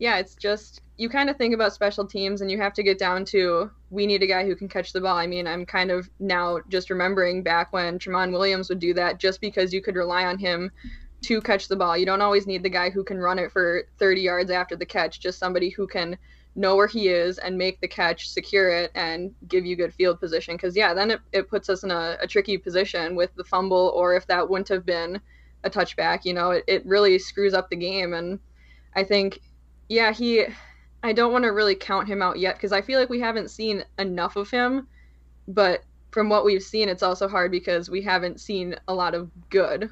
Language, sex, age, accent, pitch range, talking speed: English, female, 10-29, American, 175-200 Hz, 240 wpm